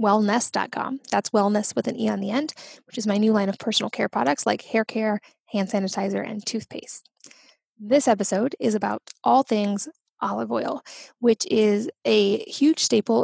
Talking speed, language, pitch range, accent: 170 wpm, English, 205-240 Hz, American